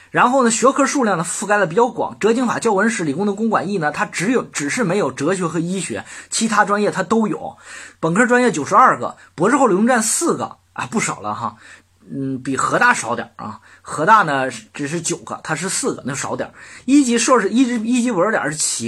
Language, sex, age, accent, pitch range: Chinese, male, 20-39, native, 145-230 Hz